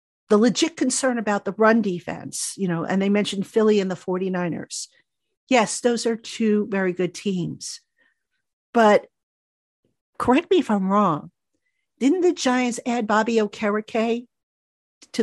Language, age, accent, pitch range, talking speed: English, 50-69, American, 190-245 Hz, 140 wpm